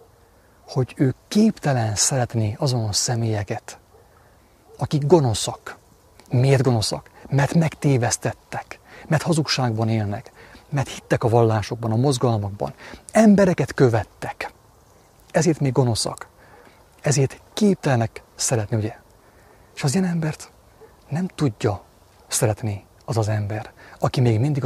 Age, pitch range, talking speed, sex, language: 30-49, 105-135 Hz, 105 wpm, male, English